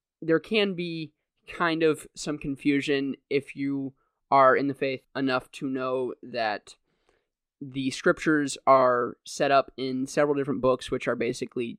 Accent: American